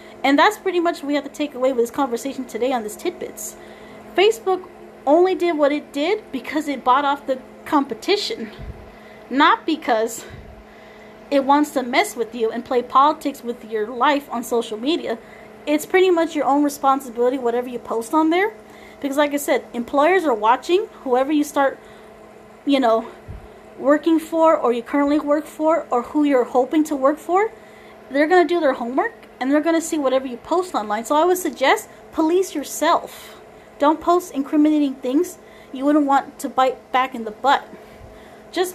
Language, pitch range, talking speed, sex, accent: English, 245-315 Hz, 185 wpm, female, American